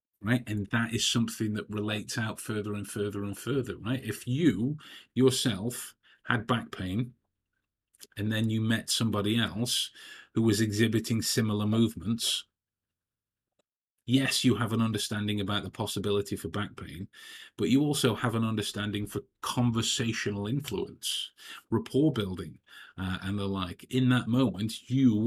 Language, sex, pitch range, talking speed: English, male, 100-120 Hz, 145 wpm